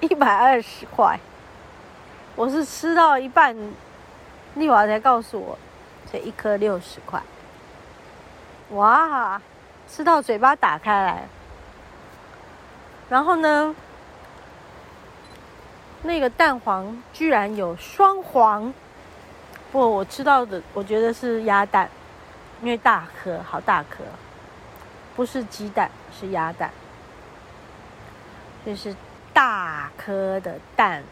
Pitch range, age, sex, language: 170-255 Hz, 30-49, female, Chinese